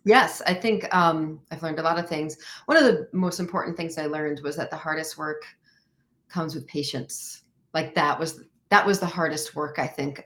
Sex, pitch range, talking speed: female, 150-175 Hz, 210 wpm